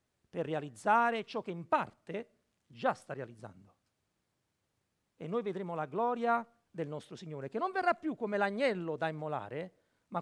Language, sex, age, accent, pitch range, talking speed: Italian, male, 50-69, native, 195-310 Hz, 155 wpm